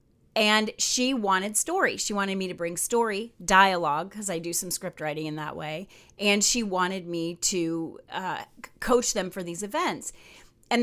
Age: 30-49